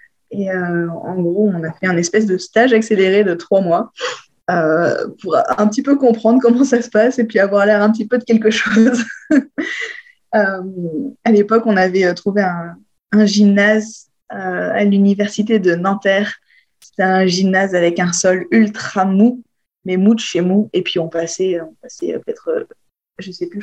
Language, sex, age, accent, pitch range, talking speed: French, female, 20-39, French, 175-220 Hz, 190 wpm